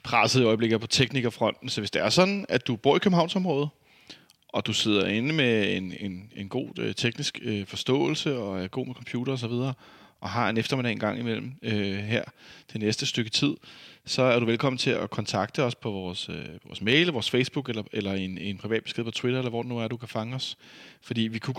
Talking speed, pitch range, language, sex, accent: 230 wpm, 100-125 Hz, Danish, male, native